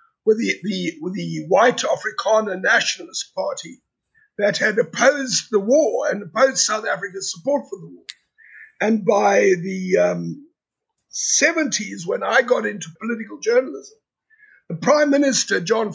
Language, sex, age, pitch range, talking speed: English, male, 60-79, 210-315 Hz, 140 wpm